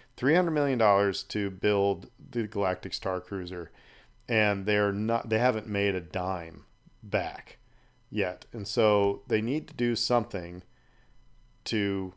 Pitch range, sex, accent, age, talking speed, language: 95-115 Hz, male, American, 40-59, 135 wpm, English